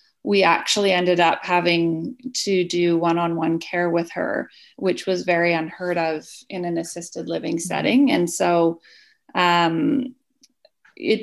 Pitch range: 170-195 Hz